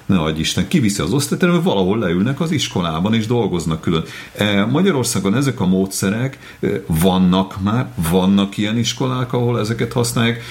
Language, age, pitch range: Hungarian, 40-59, 85-110 Hz